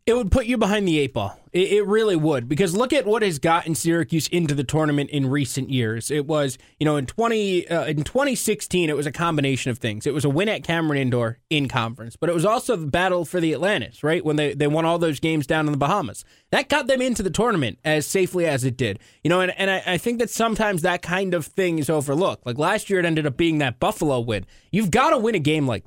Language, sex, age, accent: English, male, 20-39, American